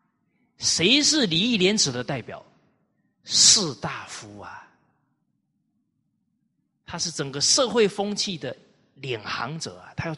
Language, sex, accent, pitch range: Chinese, male, native, 140-230 Hz